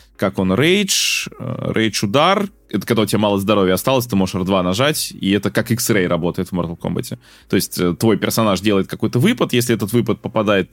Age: 20-39